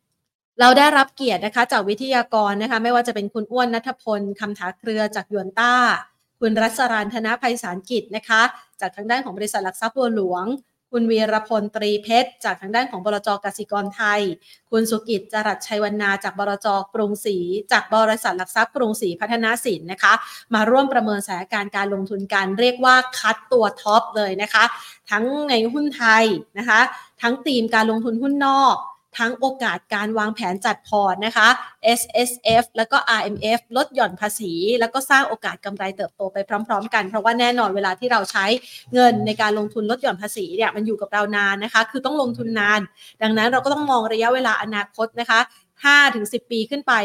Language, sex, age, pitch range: Thai, female, 20-39, 210-245 Hz